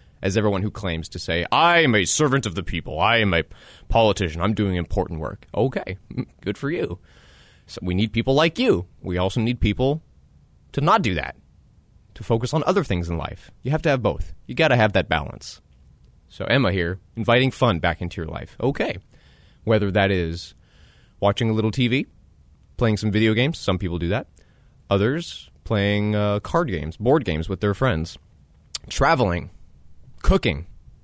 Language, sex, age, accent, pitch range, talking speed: English, male, 30-49, American, 85-120 Hz, 180 wpm